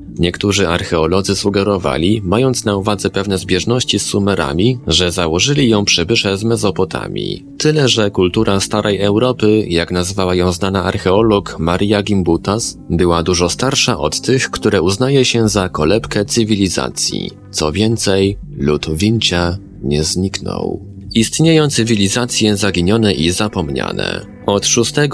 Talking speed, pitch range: 125 wpm, 90-115 Hz